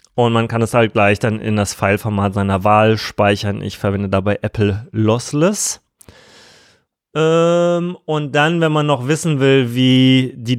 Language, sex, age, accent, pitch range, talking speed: German, male, 20-39, German, 105-125 Hz, 160 wpm